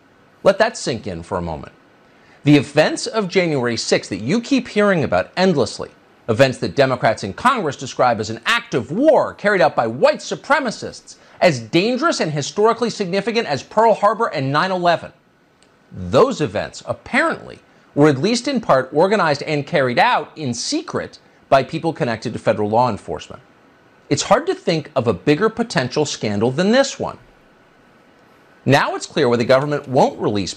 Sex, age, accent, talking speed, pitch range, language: male, 40-59, American, 165 wpm, 125-205 Hz, English